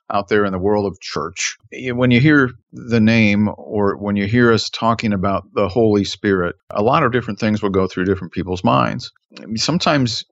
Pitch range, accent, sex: 95-115 Hz, American, male